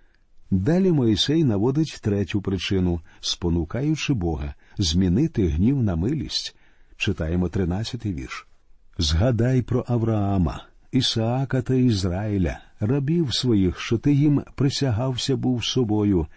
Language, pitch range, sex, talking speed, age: Ukrainian, 95-130 Hz, male, 105 wpm, 50-69